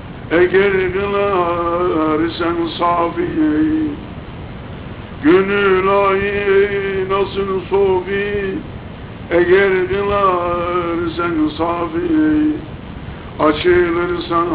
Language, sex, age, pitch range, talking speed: Turkish, male, 60-79, 130-180 Hz, 45 wpm